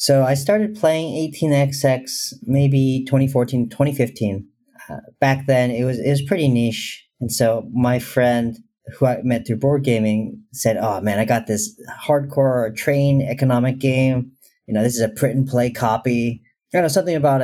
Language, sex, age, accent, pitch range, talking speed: English, male, 40-59, American, 105-135 Hz, 170 wpm